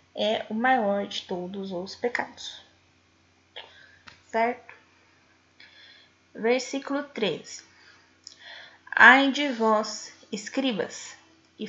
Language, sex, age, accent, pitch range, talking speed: Portuguese, female, 10-29, Brazilian, 215-260 Hz, 75 wpm